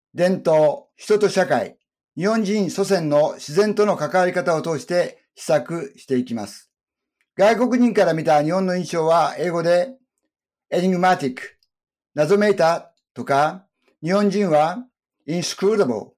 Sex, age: male, 50-69